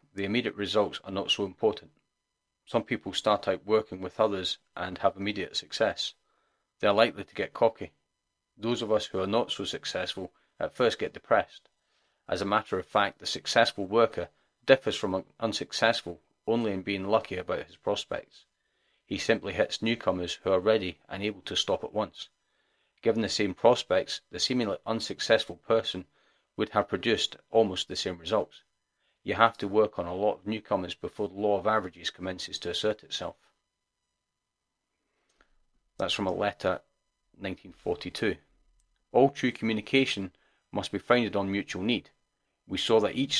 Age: 40-59